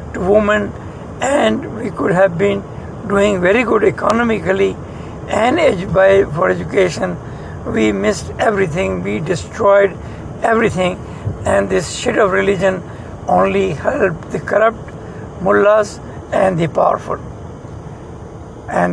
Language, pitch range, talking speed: English, 190-215 Hz, 105 wpm